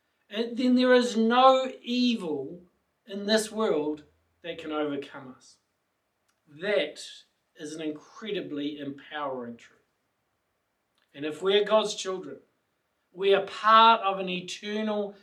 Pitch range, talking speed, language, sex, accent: 160-225 Hz, 120 wpm, English, male, Australian